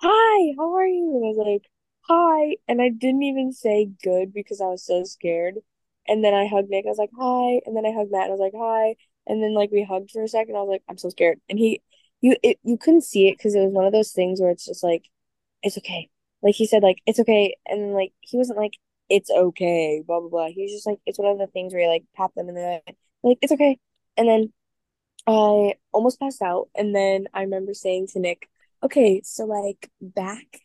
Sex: female